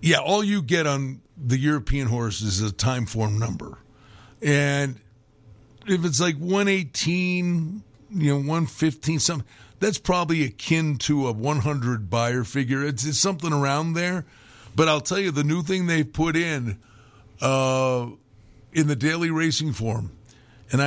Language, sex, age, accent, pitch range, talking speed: English, male, 50-69, American, 120-160 Hz, 150 wpm